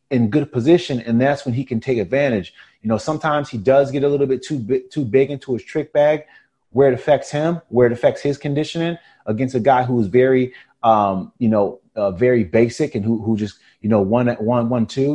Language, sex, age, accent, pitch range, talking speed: English, male, 30-49, American, 120-150 Hz, 235 wpm